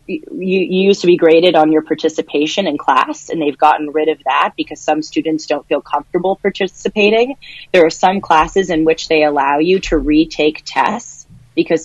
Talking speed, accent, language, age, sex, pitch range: 180 wpm, American, English, 30-49, female, 155-190 Hz